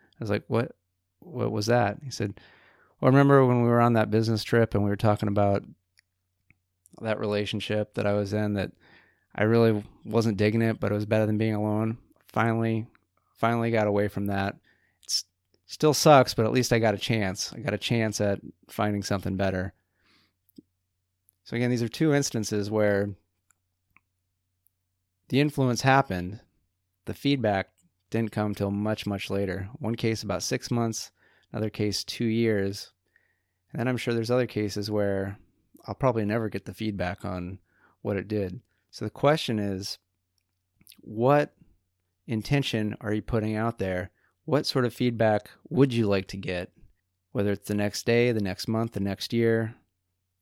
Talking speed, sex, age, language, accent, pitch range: 170 wpm, male, 30-49, English, American, 95-115 Hz